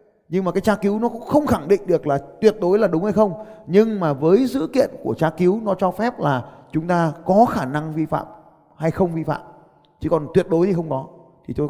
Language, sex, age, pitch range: Vietnamese, male, 20-39, 135-180 Hz